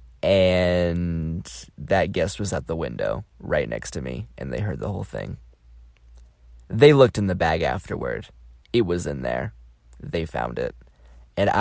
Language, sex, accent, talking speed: English, male, American, 160 wpm